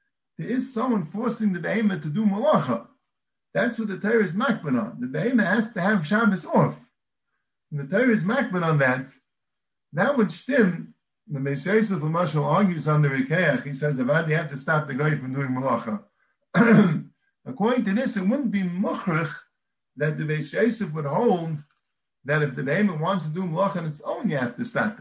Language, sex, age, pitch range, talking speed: English, male, 50-69, 155-220 Hz, 185 wpm